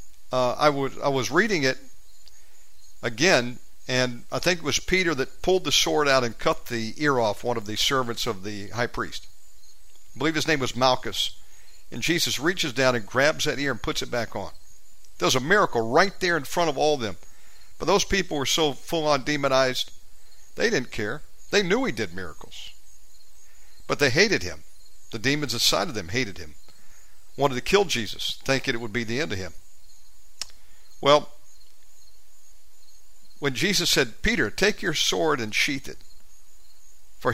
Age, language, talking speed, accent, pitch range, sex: 50-69, English, 180 wpm, American, 95-150 Hz, male